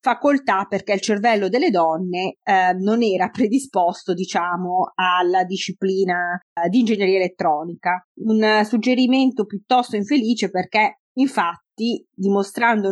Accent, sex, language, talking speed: native, female, Italian, 115 wpm